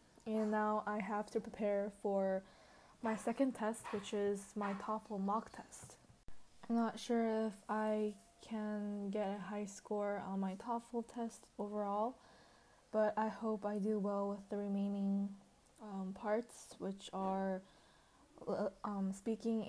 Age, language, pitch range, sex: 10-29, Korean, 200-220 Hz, female